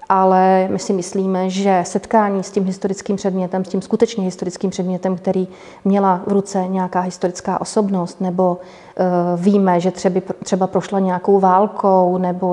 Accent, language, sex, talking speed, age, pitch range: native, Czech, female, 155 wpm, 30-49, 180-195 Hz